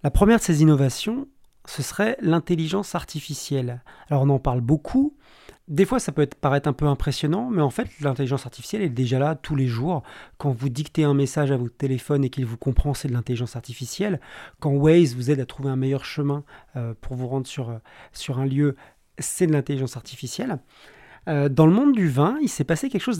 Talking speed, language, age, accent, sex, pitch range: 210 wpm, French, 40-59, French, male, 135-180 Hz